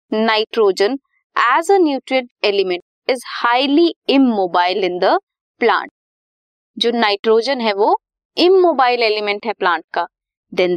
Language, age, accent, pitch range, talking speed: Hindi, 20-39, native, 215-325 Hz, 105 wpm